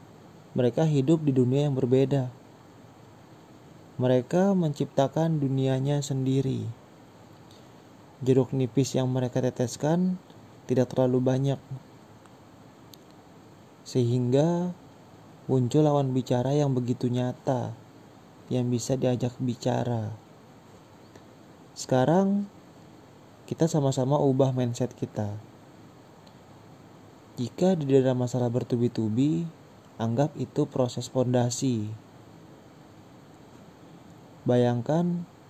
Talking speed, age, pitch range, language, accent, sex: 75 wpm, 20-39, 125-150 Hz, Indonesian, native, male